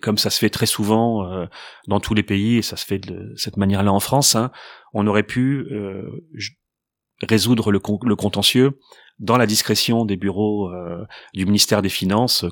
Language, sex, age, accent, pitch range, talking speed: English, male, 30-49, French, 100-125 Hz, 165 wpm